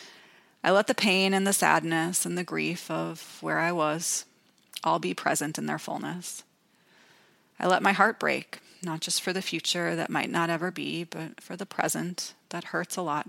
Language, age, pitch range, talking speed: English, 30-49, 160-195 Hz, 195 wpm